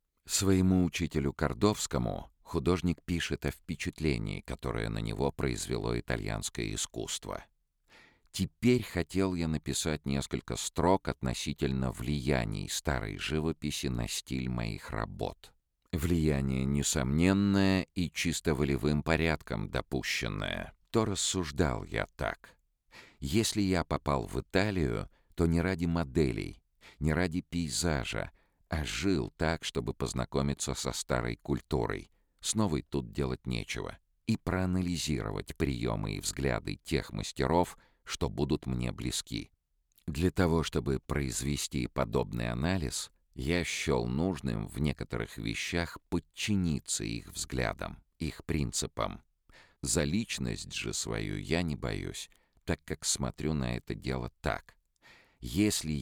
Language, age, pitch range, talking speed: Russian, 50-69, 70-85 Hz, 115 wpm